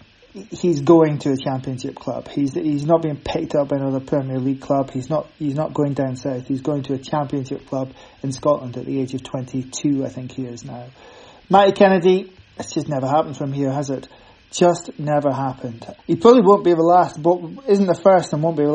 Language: English